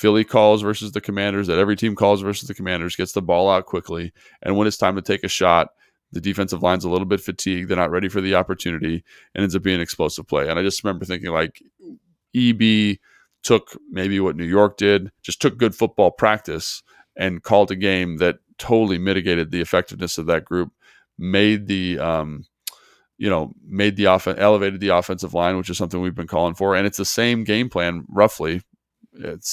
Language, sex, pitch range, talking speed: English, male, 90-105 Hz, 205 wpm